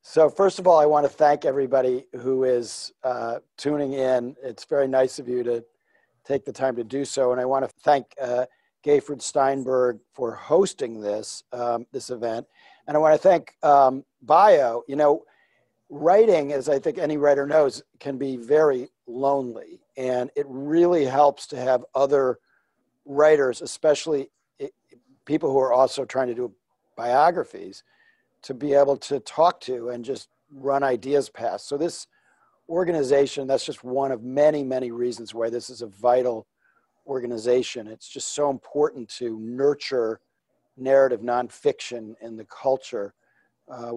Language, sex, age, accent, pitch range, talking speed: English, male, 50-69, American, 125-145 Hz, 155 wpm